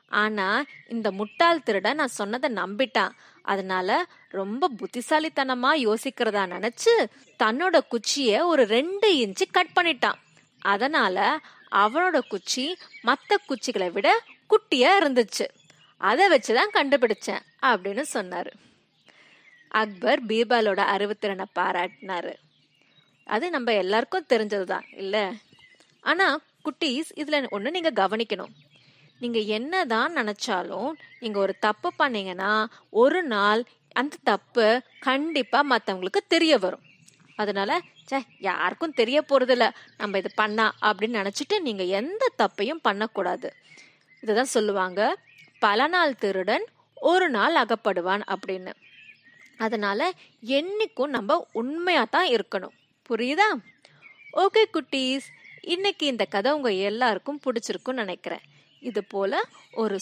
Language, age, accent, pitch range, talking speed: Tamil, 20-39, native, 205-305 Hz, 105 wpm